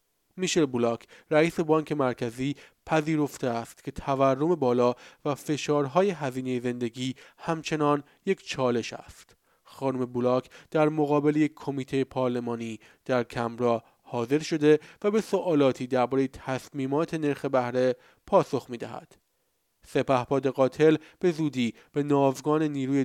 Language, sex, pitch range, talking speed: Persian, male, 125-150 Hz, 115 wpm